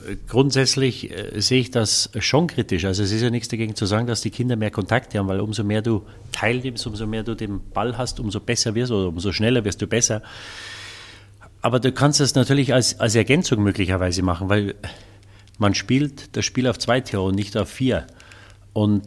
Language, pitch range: German, 100-120 Hz